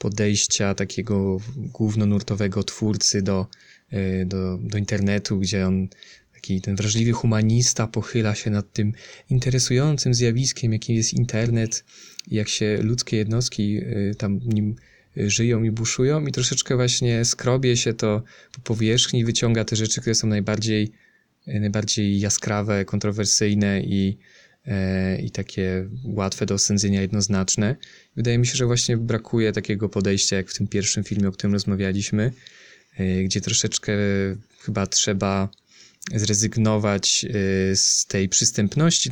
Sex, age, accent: male, 20-39, native